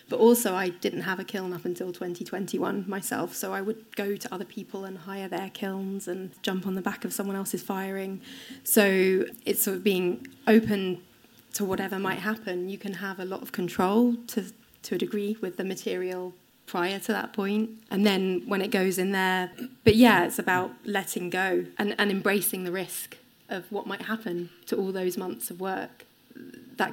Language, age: English, 20-39